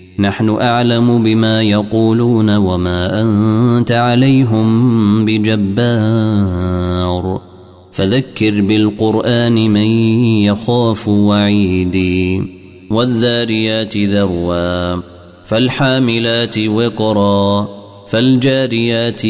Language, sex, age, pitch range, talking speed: Arabic, male, 30-49, 100-120 Hz, 55 wpm